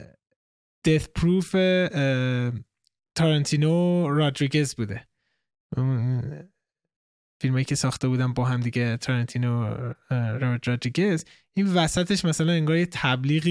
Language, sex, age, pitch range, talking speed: Persian, male, 20-39, 120-160 Hz, 90 wpm